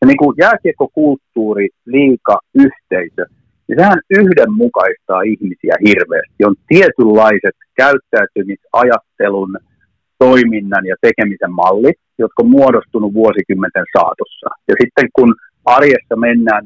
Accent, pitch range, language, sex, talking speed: native, 110-145 Hz, Finnish, male, 100 wpm